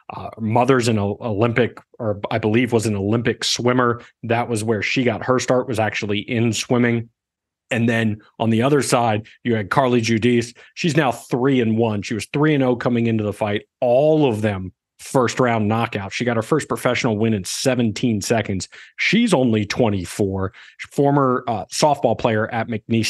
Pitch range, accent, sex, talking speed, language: 110-130 Hz, American, male, 180 wpm, English